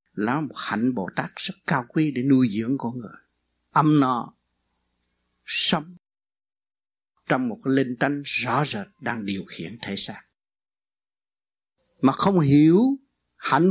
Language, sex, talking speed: Vietnamese, male, 140 wpm